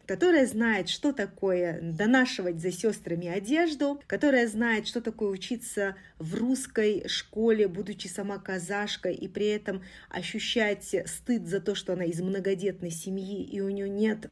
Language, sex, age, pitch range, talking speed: Russian, female, 20-39, 190-230 Hz, 145 wpm